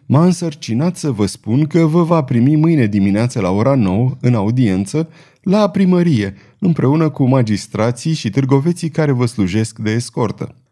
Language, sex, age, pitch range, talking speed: Romanian, male, 30-49, 115-165 Hz, 155 wpm